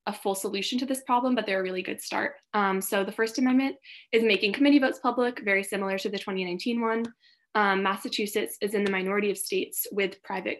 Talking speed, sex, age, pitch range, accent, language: 215 wpm, female, 20-39, 190-220 Hz, American, English